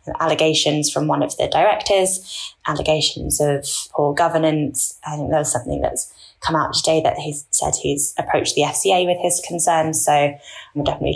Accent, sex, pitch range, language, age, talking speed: British, female, 150-165 Hz, English, 10-29, 170 wpm